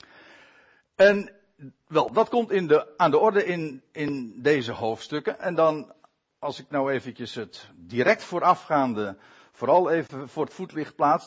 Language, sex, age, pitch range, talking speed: Dutch, male, 60-79, 140-205 Hz, 150 wpm